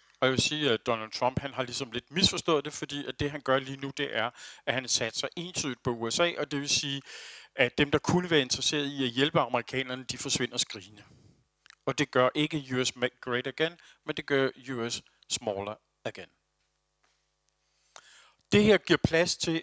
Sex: male